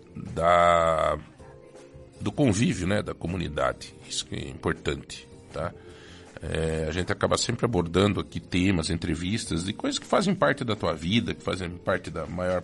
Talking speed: 155 wpm